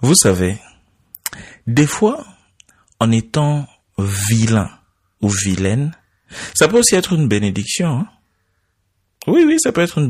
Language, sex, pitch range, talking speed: French, male, 95-135 Hz, 130 wpm